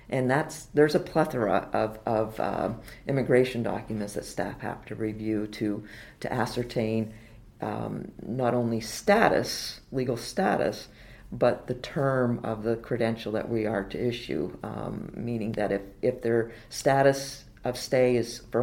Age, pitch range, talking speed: 50-69, 115-130 Hz, 150 wpm